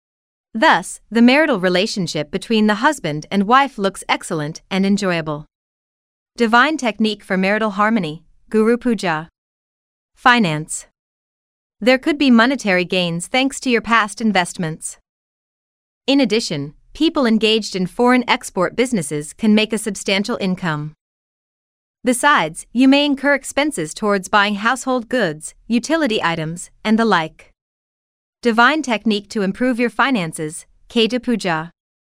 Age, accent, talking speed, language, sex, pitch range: 30-49, American, 120 wpm, English, female, 175-245 Hz